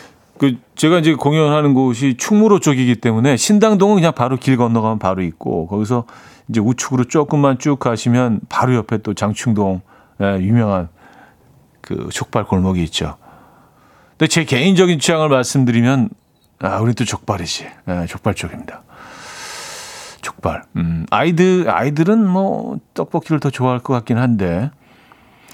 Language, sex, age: Korean, male, 40-59